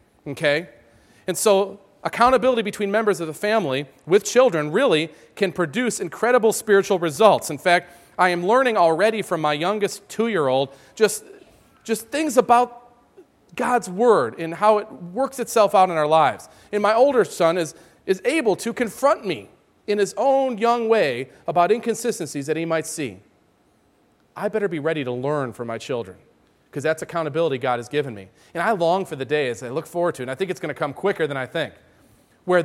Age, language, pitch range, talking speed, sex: 40-59, English, 150-210 Hz, 190 wpm, male